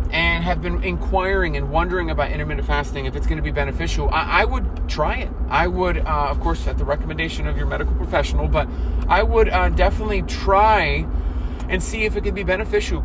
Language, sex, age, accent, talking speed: English, male, 30-49, American, 205 wpm